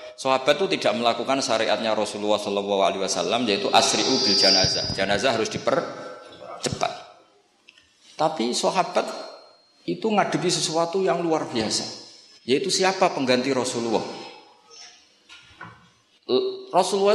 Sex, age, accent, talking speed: male, 50-69, native, 90 wpm